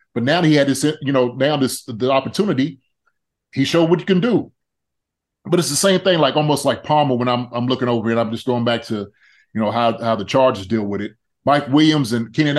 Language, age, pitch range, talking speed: English, 30-49, 125-160 Hz, 240 wpm